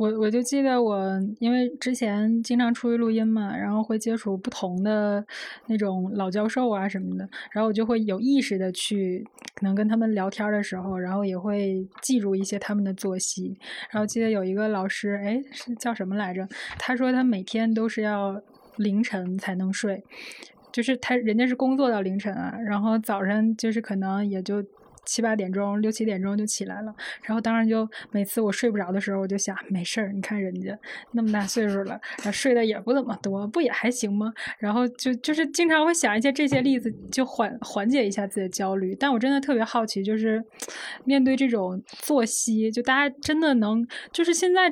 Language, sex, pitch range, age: Chinese, female, 200-245 Hz, 20-39